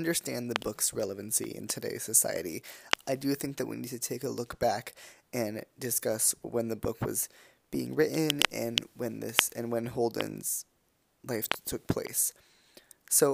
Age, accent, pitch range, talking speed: 20-39, American, 105-125 Hz, 160 wpm